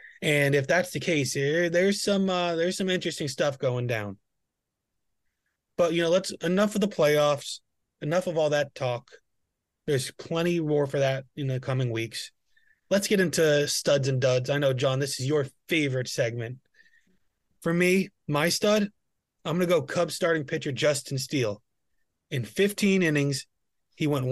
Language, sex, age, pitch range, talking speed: English, male, 30-49, 130-165 Hz, 170 wpm